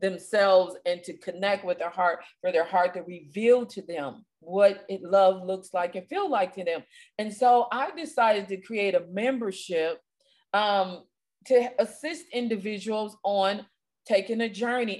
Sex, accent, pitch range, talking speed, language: female, American, 180-225 Hz, 160 wpm, English